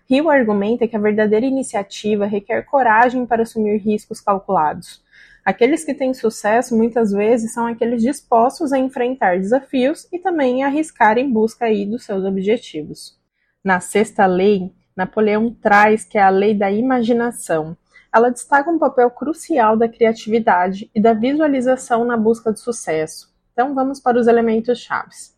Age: 20-39